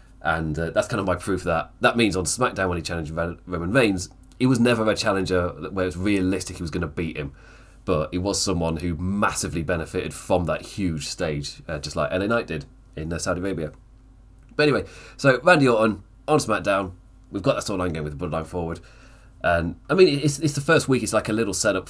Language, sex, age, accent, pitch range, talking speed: English, male, 30-49, British, 90-115 Hz, 225 wpm